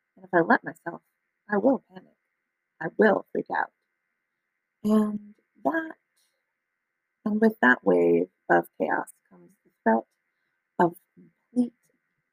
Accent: American